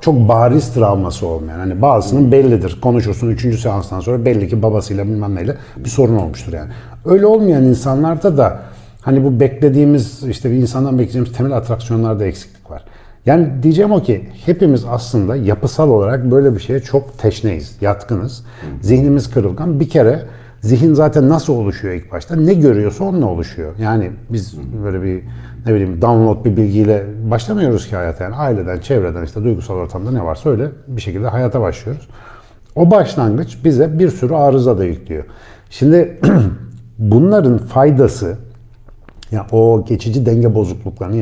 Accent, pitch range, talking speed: native, 105-140 Hz, 155 wpm